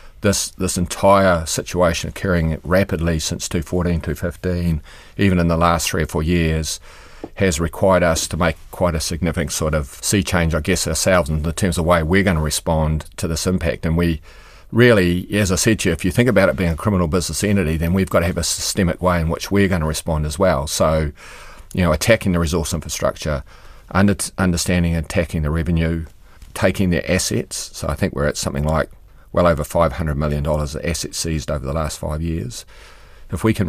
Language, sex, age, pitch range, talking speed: English, male, 40-59, 80-90 Hz, 210 wpm